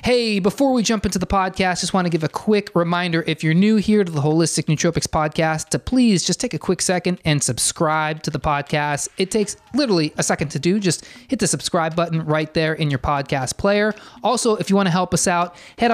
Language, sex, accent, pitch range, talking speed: English, male, American, 155-195 Hz, 225 wpm